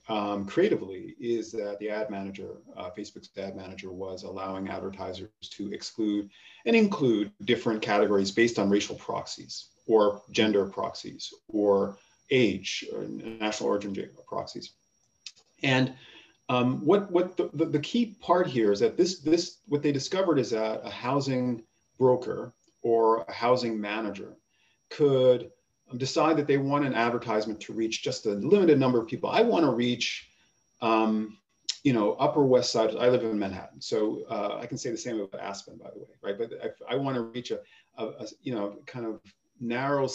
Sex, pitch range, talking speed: male, 105-135 Hz, 170 wpm